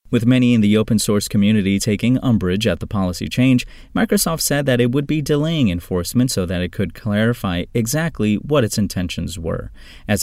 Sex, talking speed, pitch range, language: male, 180 wpm, 95-130 Hz, English